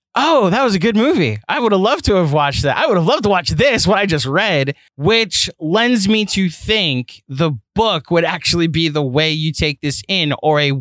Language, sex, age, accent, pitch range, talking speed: English, male, 20-39, American, 135-180 Hz, 240 wpm